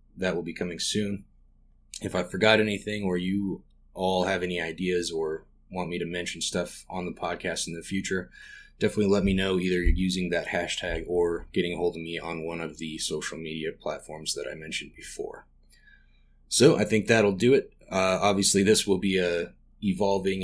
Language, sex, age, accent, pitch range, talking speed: English, male, 20-39, American, 85-100 Hz, 190 wpm